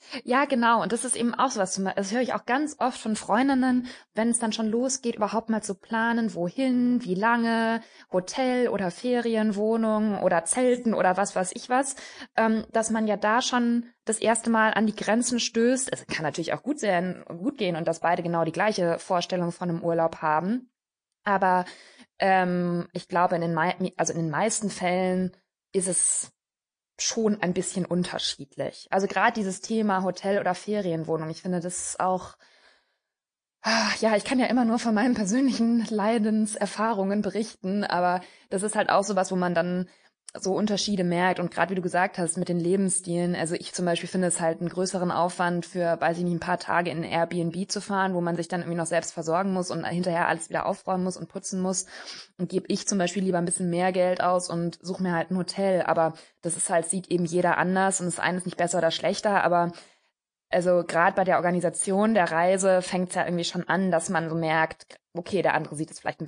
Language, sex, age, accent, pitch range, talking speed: German, female, 20-39, German, 175-220 Hz, 205 wpm